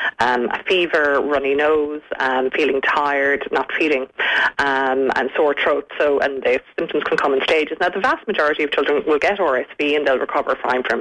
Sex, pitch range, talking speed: female, 140-170 Hz, 195 wpm